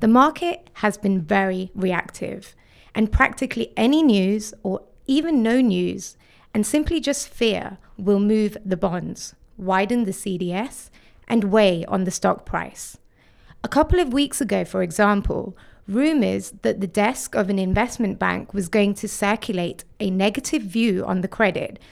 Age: 30-49